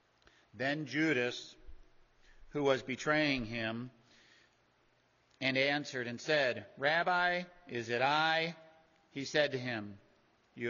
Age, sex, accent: 50-69, male, American